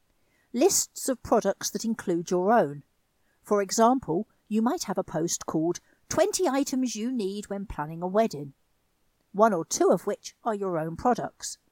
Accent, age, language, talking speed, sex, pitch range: British, 50-69, English, 165 wpm, female, 170-235 Hz